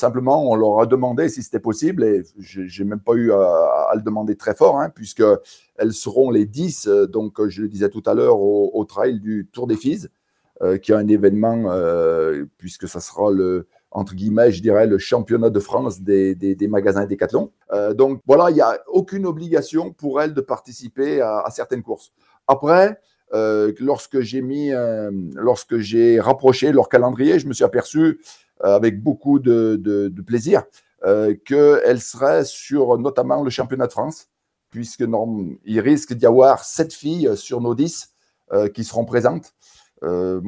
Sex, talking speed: male, 185 wpm